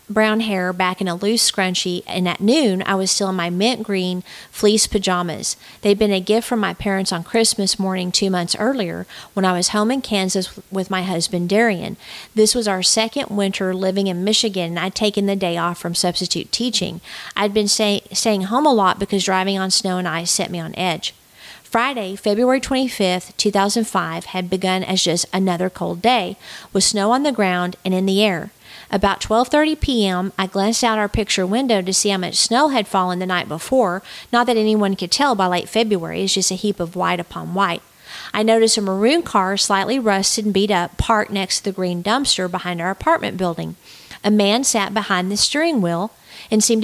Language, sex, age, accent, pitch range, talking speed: English, female, 40-59, American, 185-220 Hz, 205 wpm